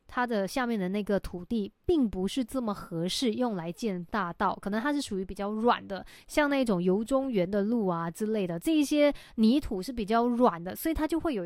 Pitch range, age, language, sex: 195-270 Hz, 20-39, Chinese, female